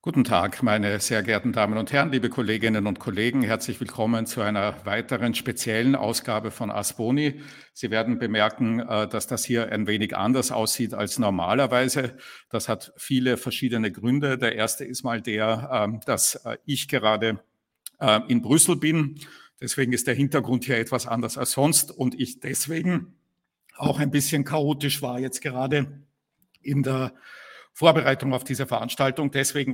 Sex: male